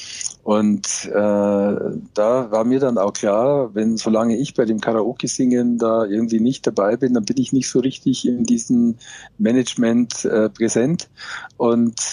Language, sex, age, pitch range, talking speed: German, male, 50-69, 110-130 Hz, 155 wpm